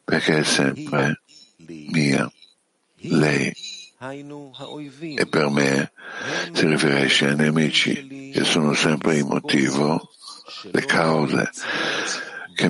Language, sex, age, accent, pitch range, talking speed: Italian, male, 60-79, native, 75-80 Hz, 95 wpm